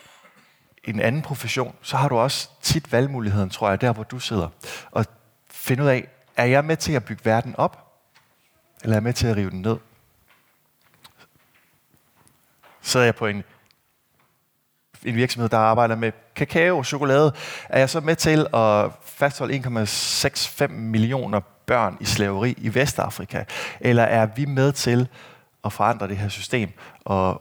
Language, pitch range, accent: Danish, 100-130 Hz, native